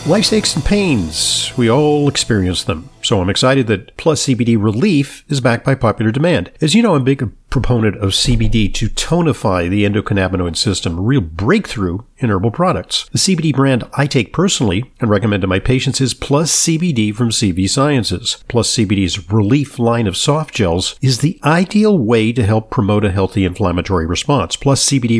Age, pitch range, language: 50-69, 105-140 Hz, English